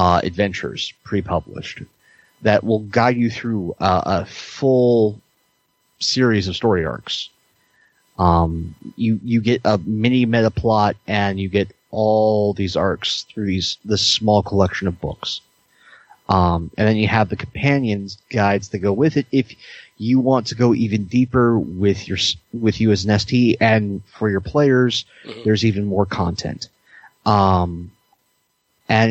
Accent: American